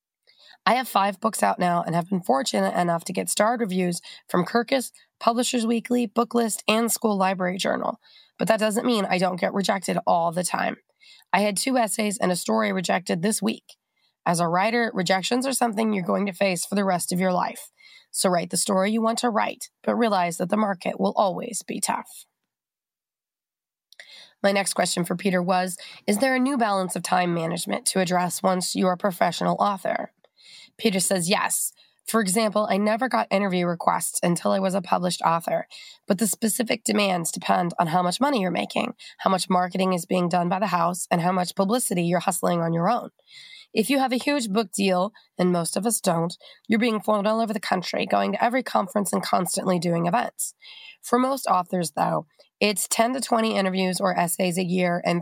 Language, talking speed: English, 200 wpm